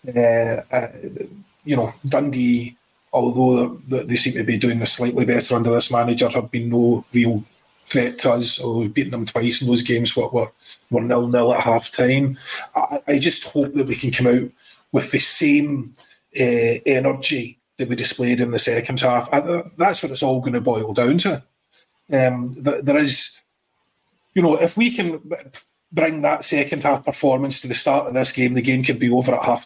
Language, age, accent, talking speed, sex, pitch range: English, 30-49, British, 195 wpm, male, 120-145 Hz